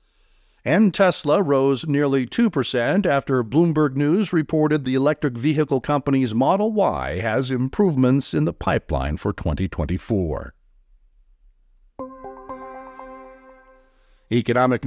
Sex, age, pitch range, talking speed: male, 50-69, 110-145 Hz, 95 wpm